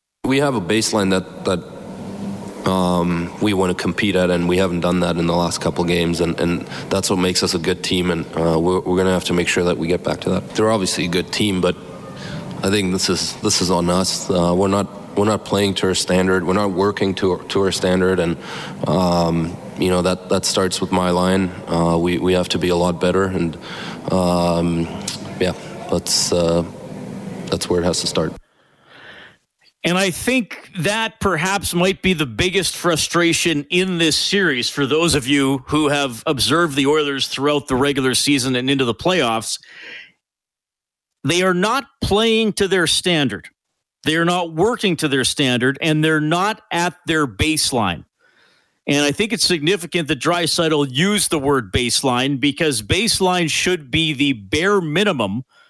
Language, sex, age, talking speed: English, male, 20-39, 190 wpm